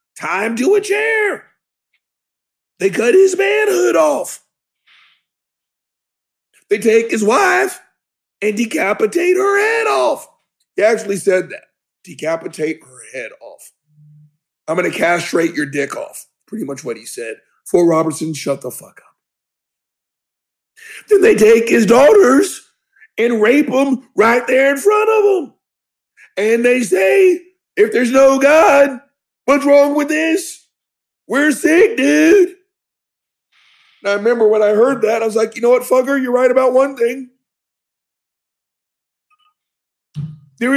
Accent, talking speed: American, 135 wpm